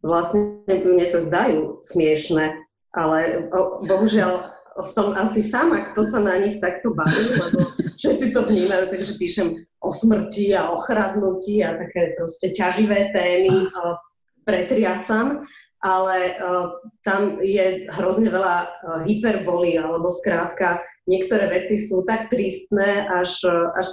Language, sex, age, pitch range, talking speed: Slovak, female, 20-39, 180-215 Hz, 130 wpm